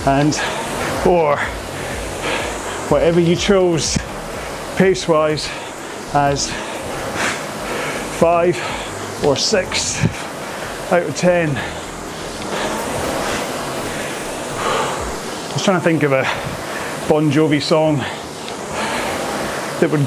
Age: 30-49